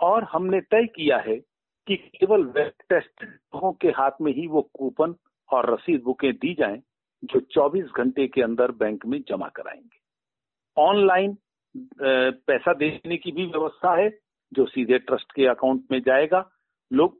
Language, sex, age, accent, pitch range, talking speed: Hindi, male, 50-69, native, 135-210 Hz, 145 wpm